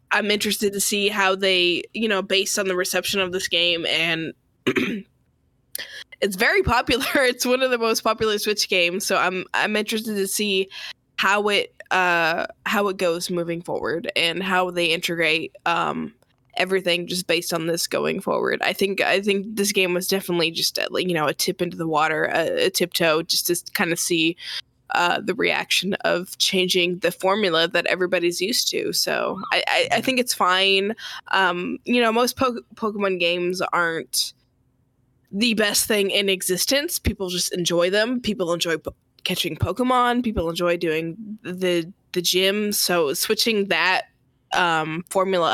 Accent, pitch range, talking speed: American, 170-210 Hz, 170 wpm